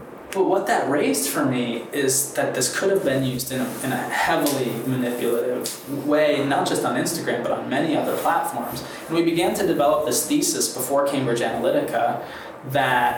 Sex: male